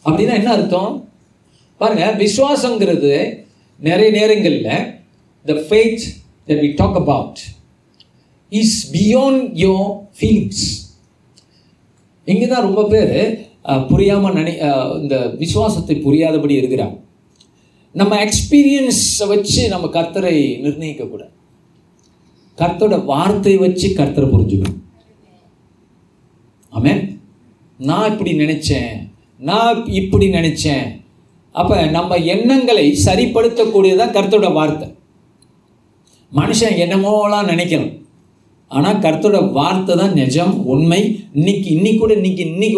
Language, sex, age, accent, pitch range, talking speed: Tamil, male, 50-69, native, 130-205 Hz, 75 wpm